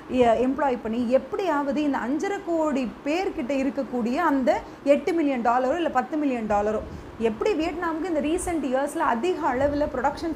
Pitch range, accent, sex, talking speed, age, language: 245-325 Hz, native, female, 140 wpm, 30-49, Tamil